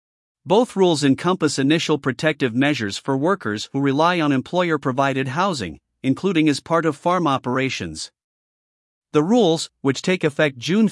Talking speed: 135 wpm